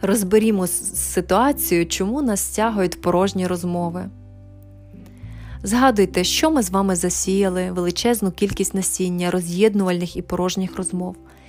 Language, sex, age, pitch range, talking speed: Ukrainian, female, 20-39, 180-215 Hz, 105 wpm